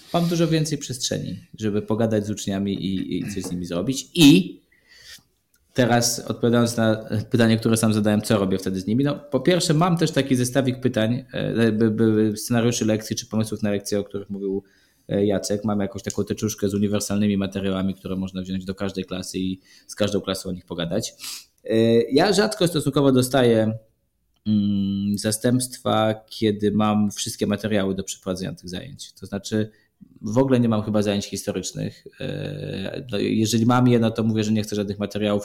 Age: 20-39